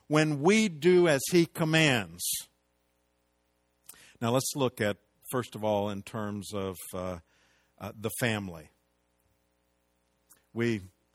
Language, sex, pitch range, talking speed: English, male, 90-120 Hz, 115 wpm